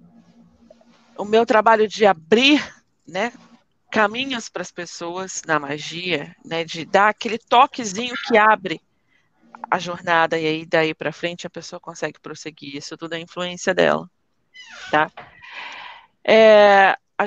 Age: 40-59